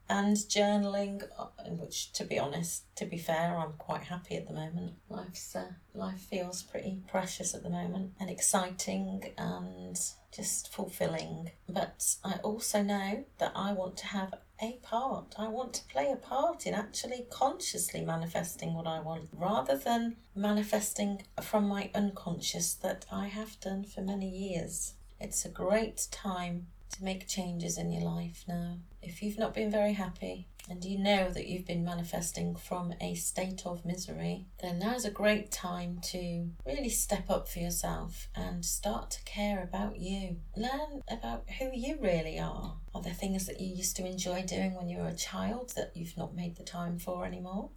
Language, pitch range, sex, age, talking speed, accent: English, 170-205 Hz, female, 30-49, 175 wpm, British